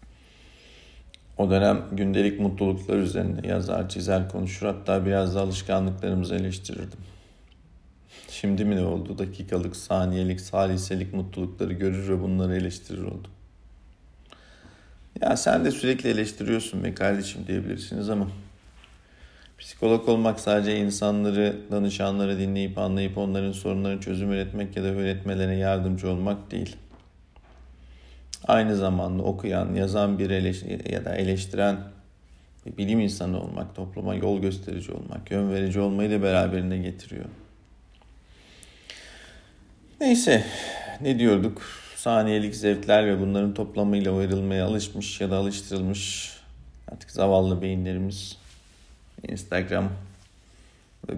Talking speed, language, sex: 110 wpm, Turkish, male